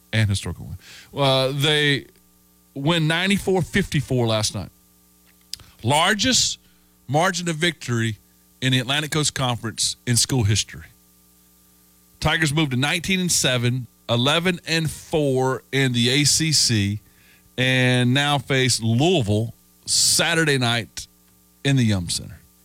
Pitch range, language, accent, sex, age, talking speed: 105-170 Hz, English, American, male, 40-59, 105 wpm